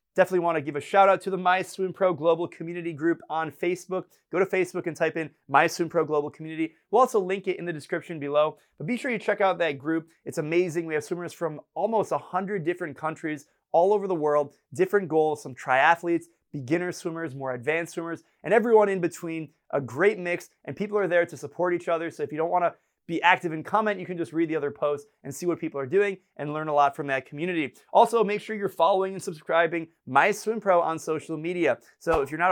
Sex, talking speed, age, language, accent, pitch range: male, 240 wpm, 30-49, English, American, 160-195 Hz